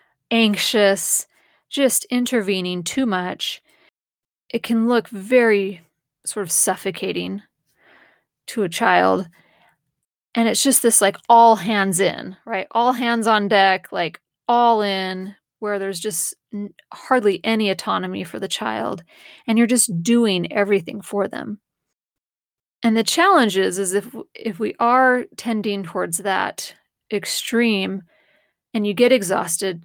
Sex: female